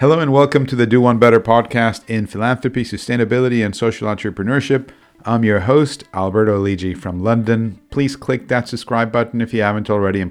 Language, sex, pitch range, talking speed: English, male, 100-120 Hz, 185 wpm